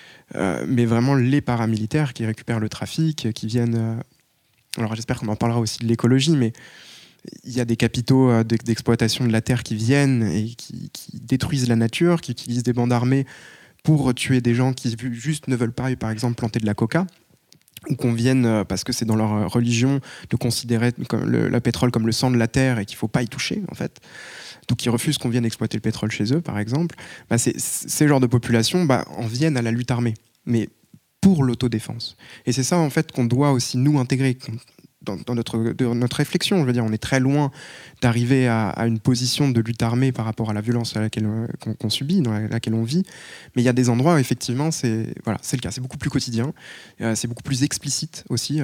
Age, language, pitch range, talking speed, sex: 20-39, French, 115-135 Hz, 225 wpm, male